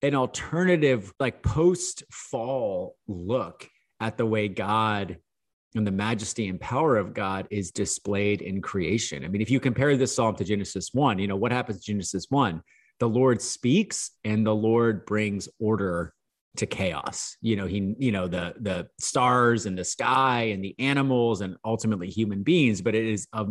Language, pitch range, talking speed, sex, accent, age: English, 100-125 Hz, 180 wpm, male, American, 30-49